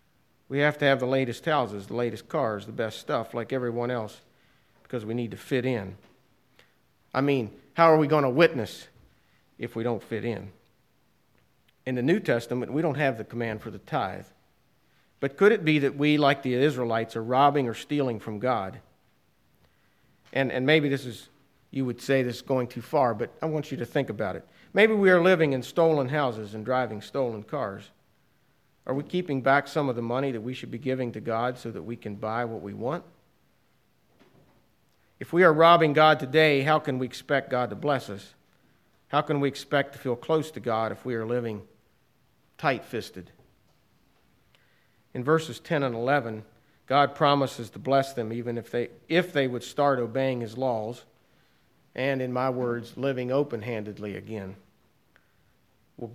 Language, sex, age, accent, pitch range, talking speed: English, male, 50-69, American, 115-140 Hz, 185 wpm